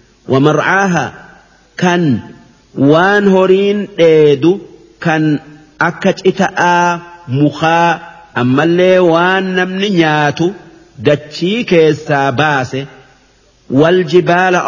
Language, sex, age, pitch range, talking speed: Arabic, male, 50-69, 145-180 Hz, 55 wpm